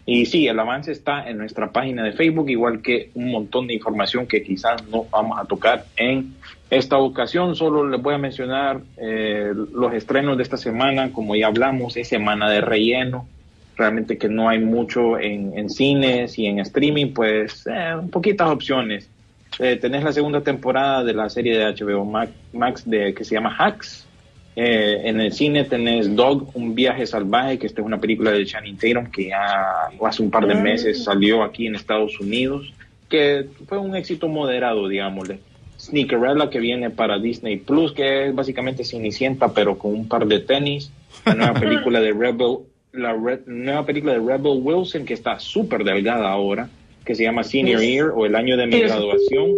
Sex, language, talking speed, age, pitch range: male, Spanish, 185 wpm, 30-49, 110-135 Hz